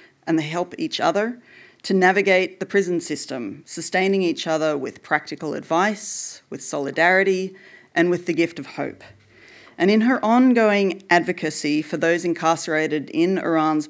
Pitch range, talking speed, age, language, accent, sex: 160-195 Hz, 145 wpm, 40-59, English, Australian, female